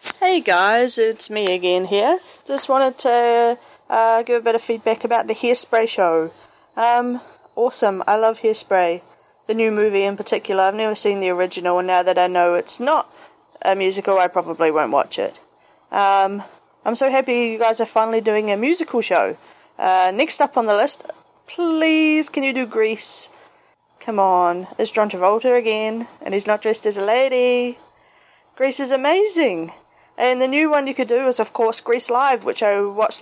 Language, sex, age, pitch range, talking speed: English, female, 20-39, 200-250 Hz, 185 wpm